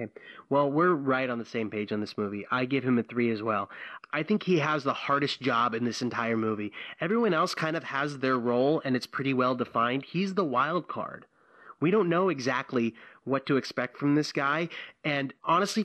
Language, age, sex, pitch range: English, 30-49, male, 125-160 Hz